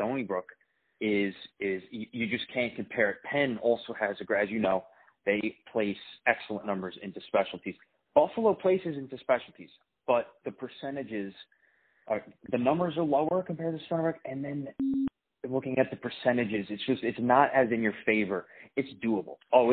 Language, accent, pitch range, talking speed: English, American, 110-145 Hz, 175 wpm